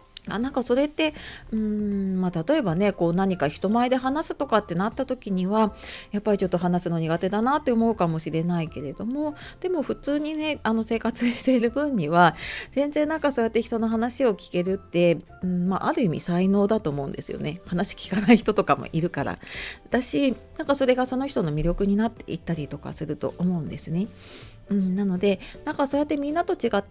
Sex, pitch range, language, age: female, 170-245 Hz, Japanese, 30-49